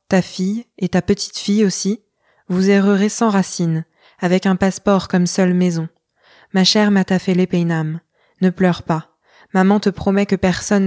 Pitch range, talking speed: 175-195 Hz, 155 wpm